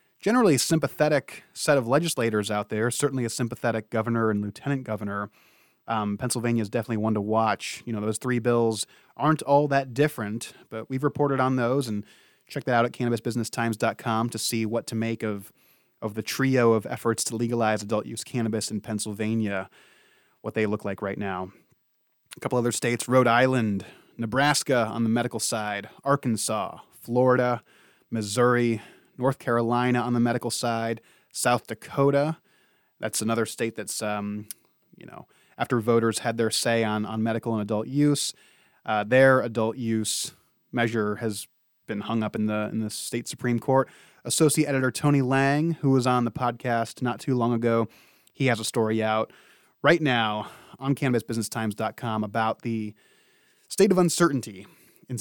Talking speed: 160 wpm